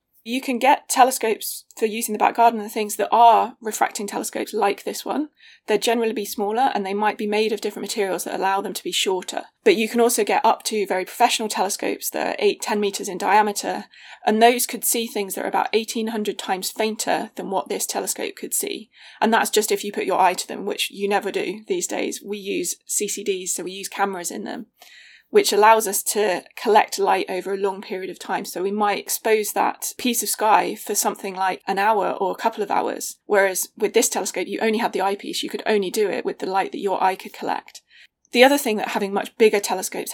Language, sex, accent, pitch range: English, female, British, 200-245 Hz